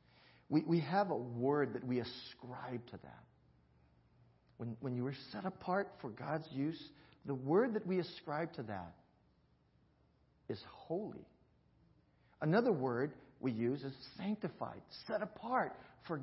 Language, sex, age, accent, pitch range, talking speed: English, male, 50-69, American, 115-185 Hz, 130 wpm